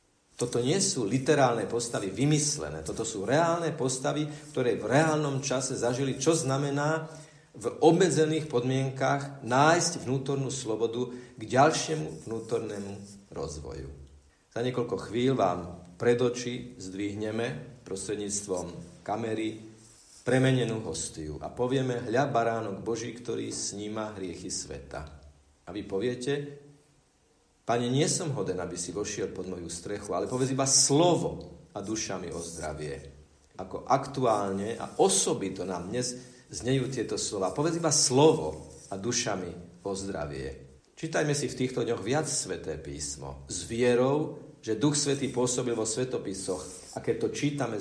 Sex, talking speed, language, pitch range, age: male, 130 wpm, Slovak, 95-135 Hz, 50-69